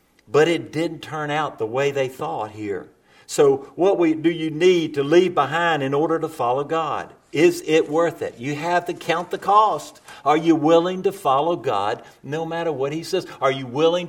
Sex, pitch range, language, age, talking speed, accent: male, 135-185 Hz, English, 50-69, 200 wpm, American